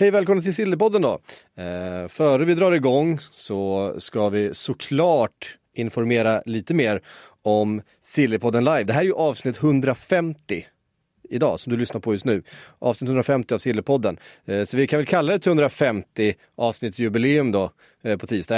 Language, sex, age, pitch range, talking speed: Swedish, male, 30-49, 105-140 Hz, 160 wpm